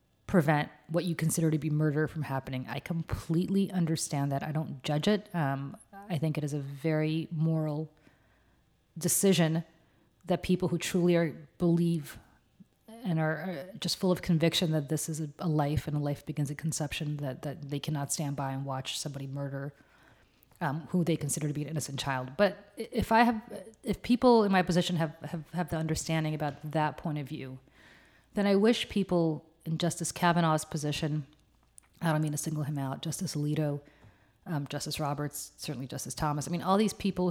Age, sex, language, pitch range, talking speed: 30-49, female, English, 145-170 Hz, 190 wpm